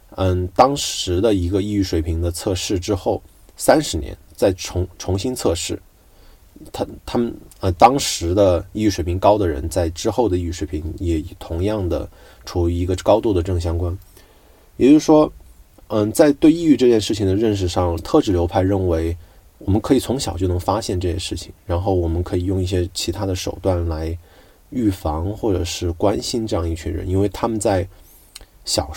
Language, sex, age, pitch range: Chinese, male, 20-39, 85-100 Hz